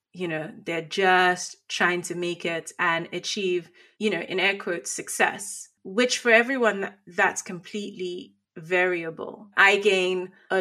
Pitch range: 185-220 Hz